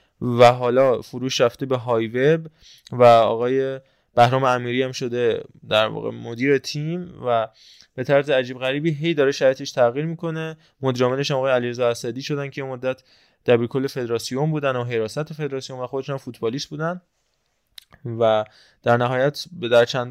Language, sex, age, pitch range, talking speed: Persian, male, 20-39, 115-140 Hz, 160 wpm